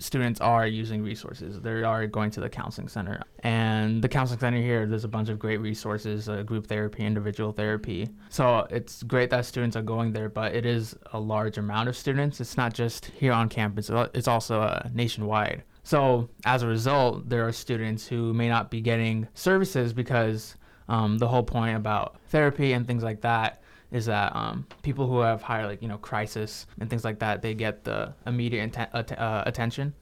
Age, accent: 20-39, American